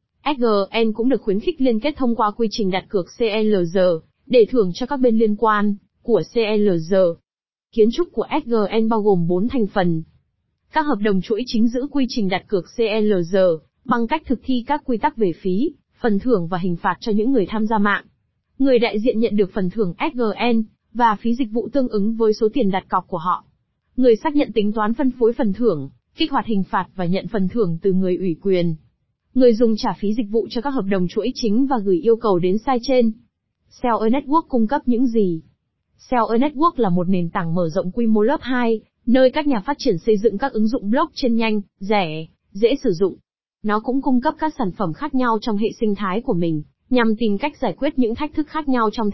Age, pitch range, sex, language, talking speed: 20-39, 200-250 Hz, female, Vietnamese, 225 wpm